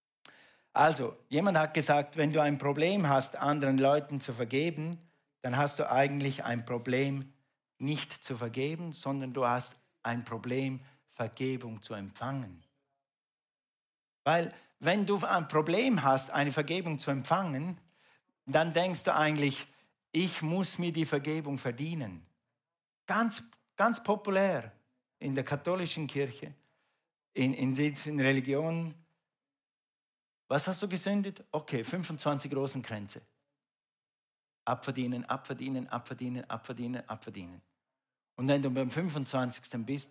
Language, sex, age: German, male, 50-69